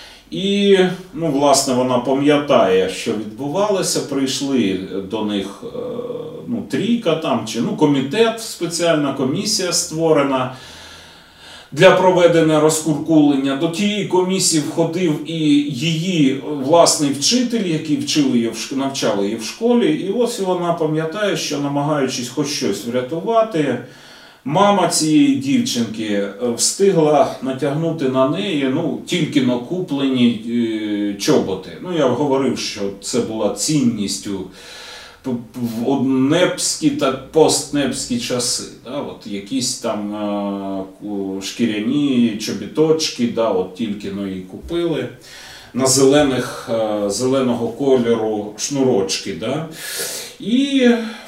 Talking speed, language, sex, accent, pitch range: 110 wpm, Russian, male, native, 115-175 Hz